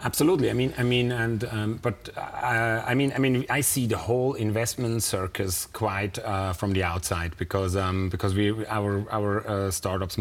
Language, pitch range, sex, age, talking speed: English, 95-110 Hz, male, 30-49, 190 wpm